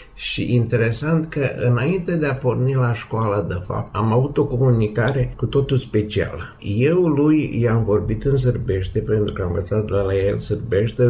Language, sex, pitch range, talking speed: Romanian, male, 100-125 Hz, 170 wpm